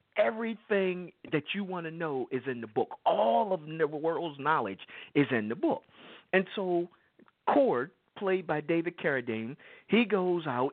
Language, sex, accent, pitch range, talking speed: English, male, American, 135-185 Hz, 160 wpm